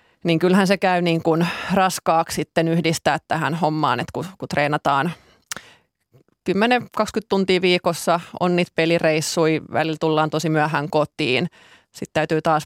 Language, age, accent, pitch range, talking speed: Finnish, 30-49, native, 155-185 Hz, 135 wpm